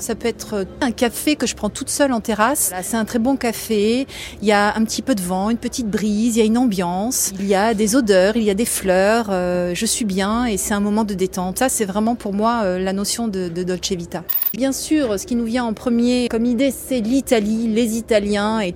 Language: French